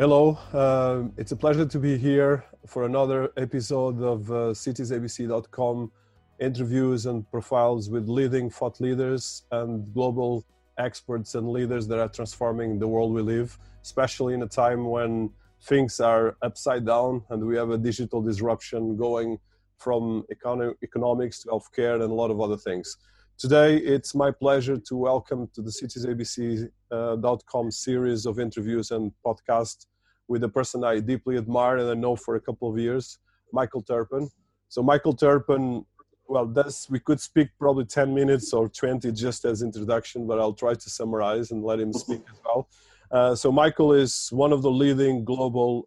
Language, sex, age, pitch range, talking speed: English, male, 20-39, 115-130 Hz, 165 wpm